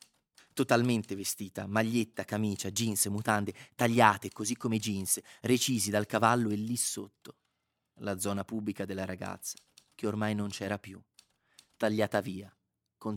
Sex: male